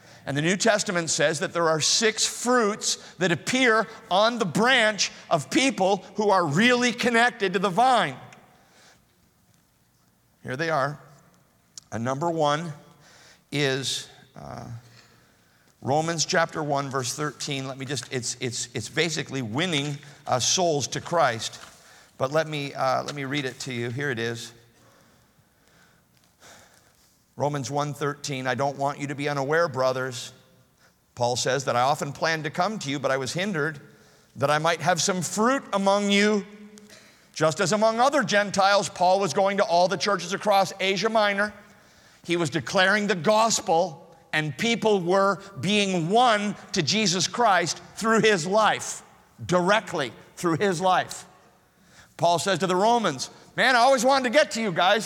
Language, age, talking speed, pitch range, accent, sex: English, 50-69, 155 wpm, 145-205 Hz, American, male